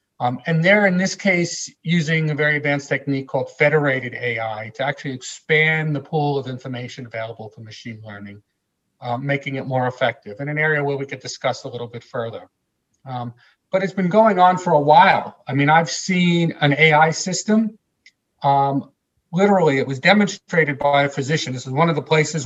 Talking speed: 190 wpm